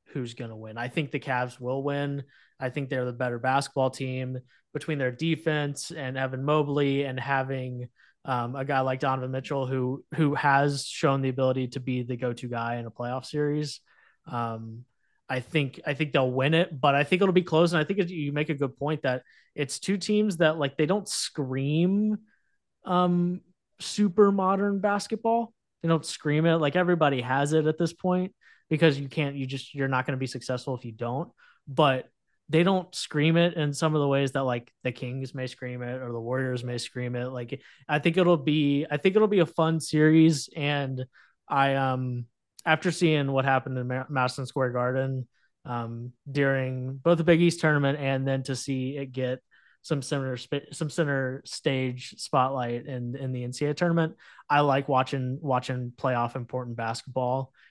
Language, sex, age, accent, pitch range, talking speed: English, male, 20-39, American, 130-155 Hz, 190 wpm